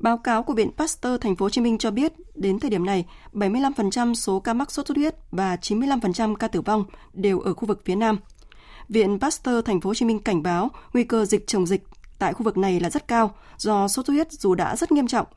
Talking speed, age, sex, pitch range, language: 260 wpm, 20-39, female, 195-245 Hz, Vietnamese